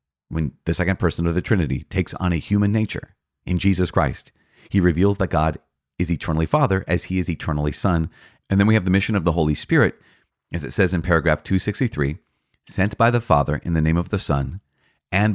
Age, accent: 40-59, American